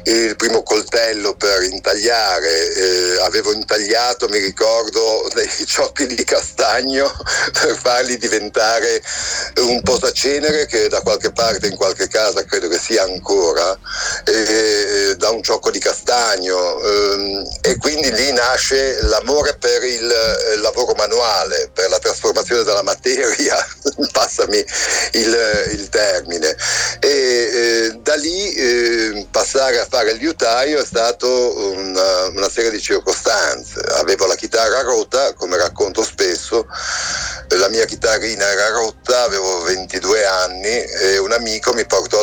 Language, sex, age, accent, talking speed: Italian, male, 60-79, native, 130 wpm